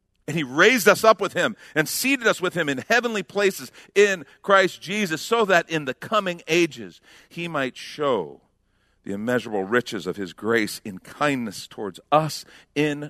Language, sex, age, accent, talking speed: English, male, 50-69, American, 175 wpm